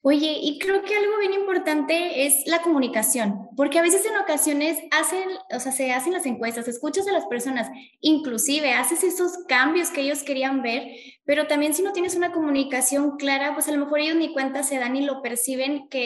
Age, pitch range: 20-39, 245-300 Hz